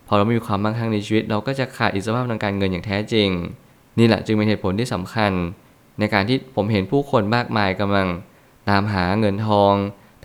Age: 20-39